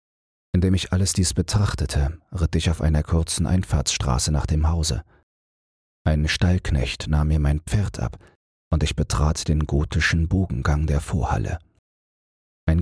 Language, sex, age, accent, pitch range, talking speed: German, male, 40-59, German, 70-85 Hz, 140 wpm